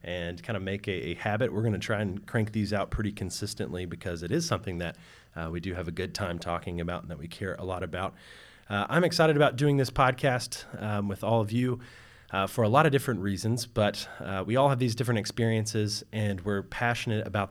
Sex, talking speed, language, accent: male, 235 wpm, English, American